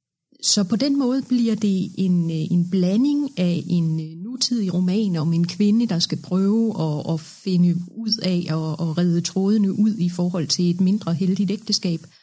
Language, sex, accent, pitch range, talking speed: Danish, female, native, 165-200 Hz, 170 wpm